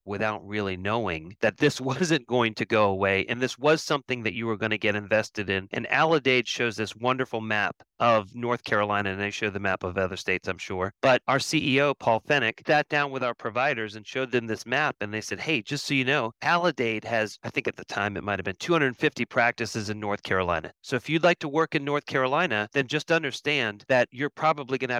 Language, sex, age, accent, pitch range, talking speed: English, male, 30-49, American, 105-135 Hz, 230 wpm